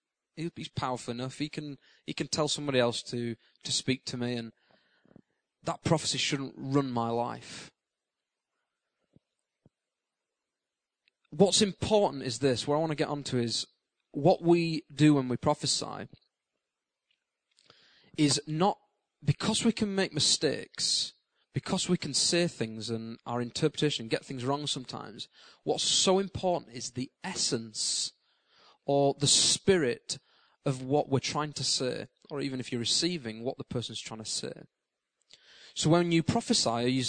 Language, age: English, 20-39